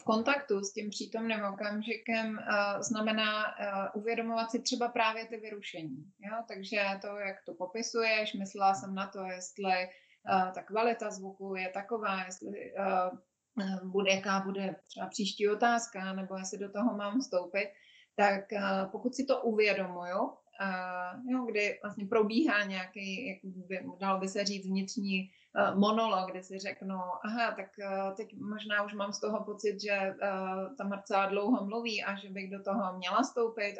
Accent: native